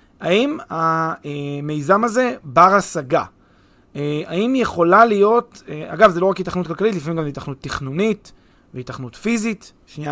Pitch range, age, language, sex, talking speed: 150-205 Hz, 30-49, Hebrew, male, 125 wpm